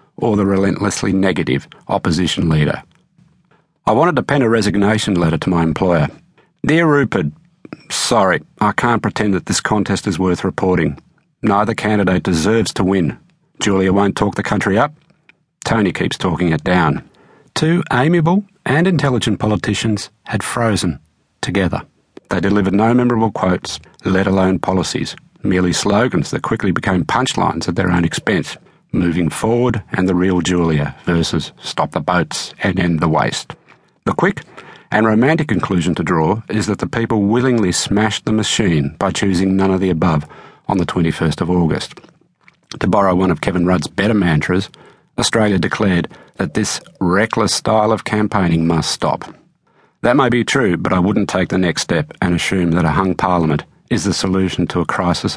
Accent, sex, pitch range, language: Australian, male, 90-110 Hz, English